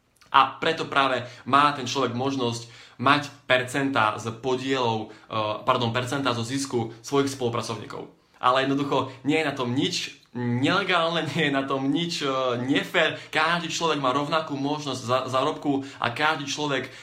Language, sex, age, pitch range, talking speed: Slovak, male, 20-39, 120-145 Hz, 150 wpm